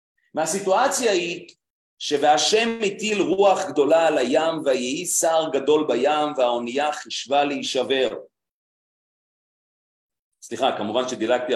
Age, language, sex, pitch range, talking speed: 40-59, Hebrew, male, 165-240 Hz, 95 wpm